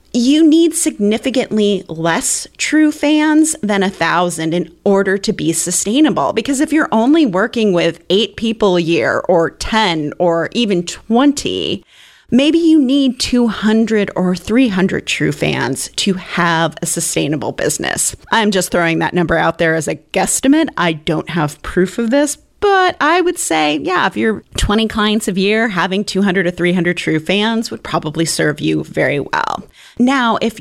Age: 30-49